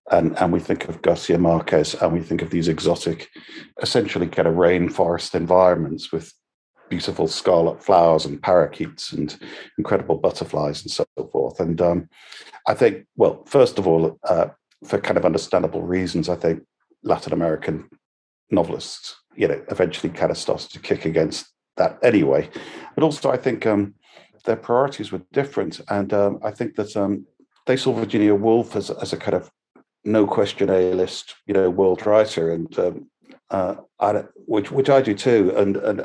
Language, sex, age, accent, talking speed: English, male, 50-69, British, 170 wpm